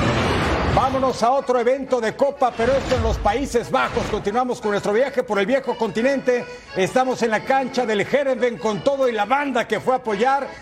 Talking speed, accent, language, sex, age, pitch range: 200 wpm, Mexican, Spanish, male, 50-69, 210-260 Hz